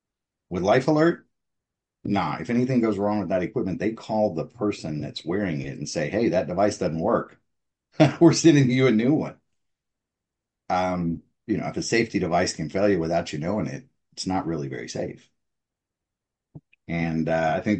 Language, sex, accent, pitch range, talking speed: English, male, American, 80-105 Hz, 180 wpm